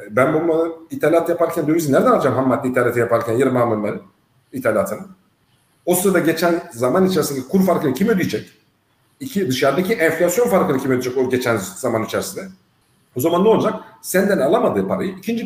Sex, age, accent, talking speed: male, 50-69, native, 160 wpm